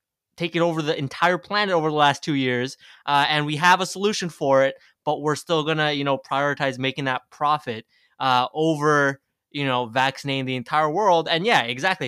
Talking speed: 200 wpm